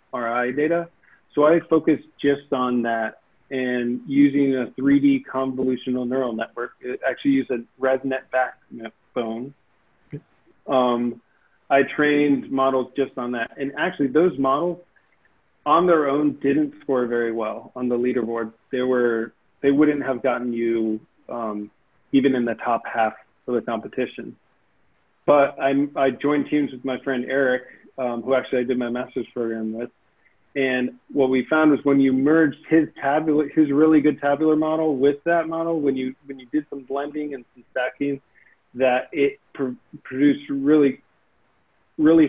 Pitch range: 125-145 Hz